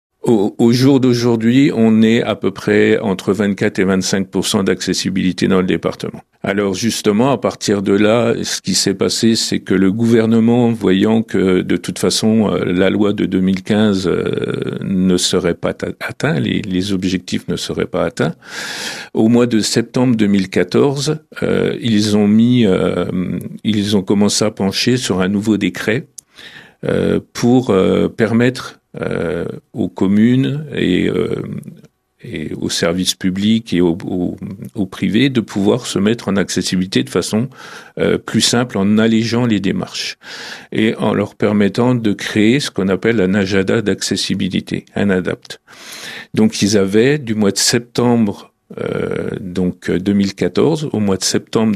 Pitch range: 95-115 Hz